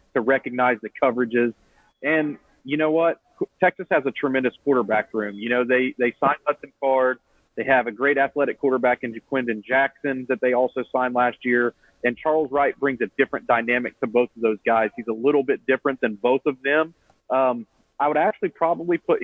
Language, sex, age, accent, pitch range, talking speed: English, male, 40-59, American, 125-150 Hz, 195 wpm